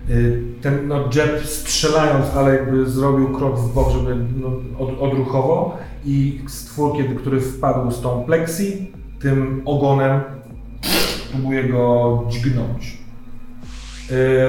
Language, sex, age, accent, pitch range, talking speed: Polish, male, 40-59, native, 115-135 Hz, 115 wpm